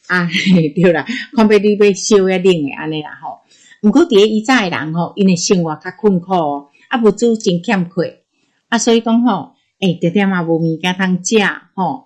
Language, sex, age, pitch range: Chinese, female, 50-69, 170-225 Hz